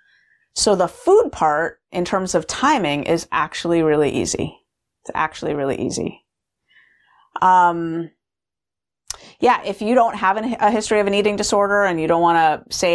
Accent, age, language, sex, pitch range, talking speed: American, 30-49, English, female, 160-205 Hz, 160 wpm